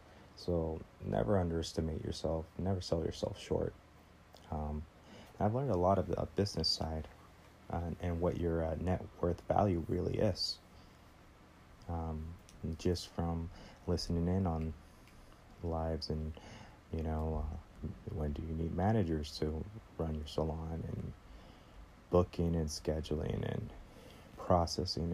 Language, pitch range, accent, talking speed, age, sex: English, 80-95 Hz, American, 130 wpm, 30-49, male